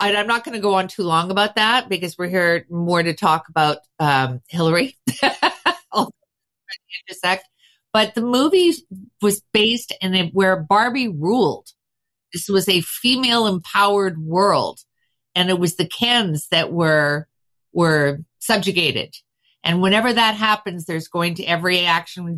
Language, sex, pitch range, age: English, female, 155-200 Hz, 50-69